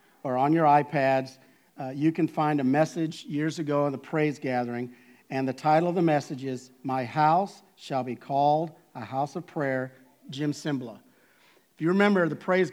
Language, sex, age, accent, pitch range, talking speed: English, male, 50-69, American, 145-185 Hz, 185 wpm